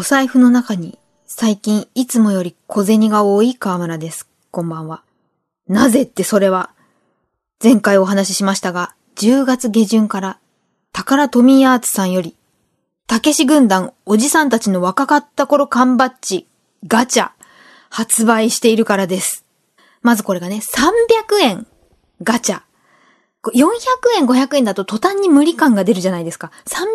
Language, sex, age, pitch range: Japanese, female, 20-39, 200-285 Hz